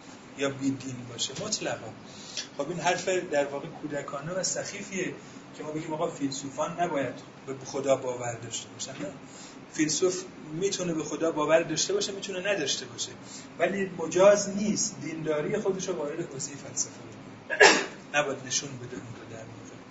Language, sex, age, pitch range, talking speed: Persian, male, 30-49, 140-185 Hz, 150 wpm